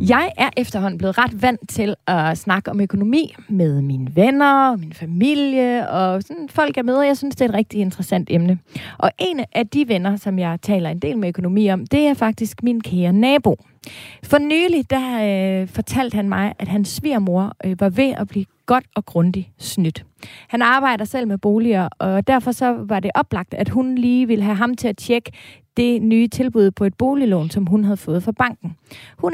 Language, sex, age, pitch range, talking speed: Danish, female, 30-49, 190-250 Hz, 200 wpm